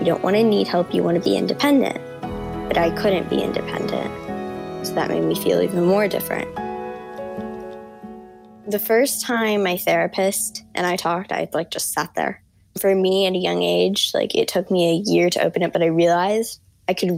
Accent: American